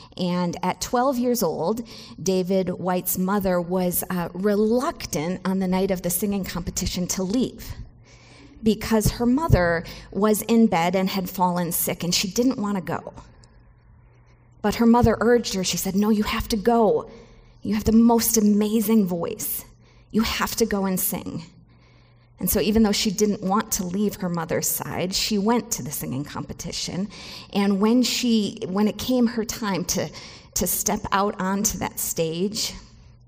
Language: English